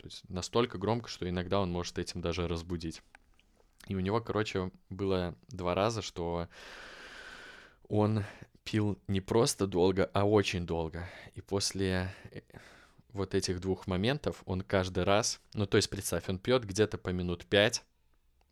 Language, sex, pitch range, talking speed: Russian, male, 90-110 Hz, 150 wpm